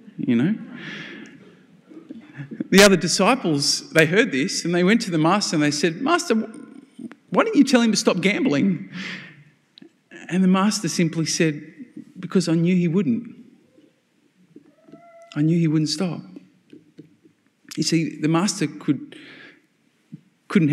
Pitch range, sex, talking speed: 150-215 Hz, male, 135 wpm